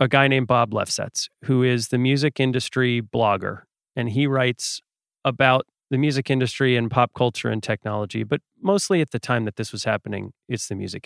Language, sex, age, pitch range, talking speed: English, male, 40-59, 120-145 Hz, 190 wpm